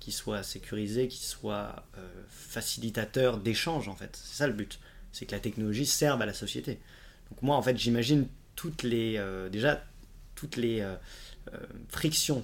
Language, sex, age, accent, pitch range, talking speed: French, male, 20-39, French, 100-125 Hz, 165 wpm